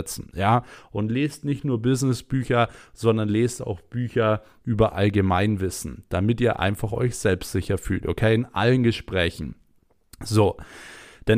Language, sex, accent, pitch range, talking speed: German, male, German, 105-125 Hz, 130 wpm